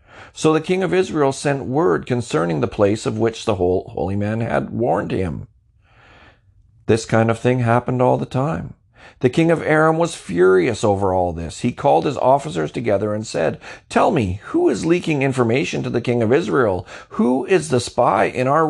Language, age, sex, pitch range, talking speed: English, 40-59, male, 105-140 Hz, 190 wpm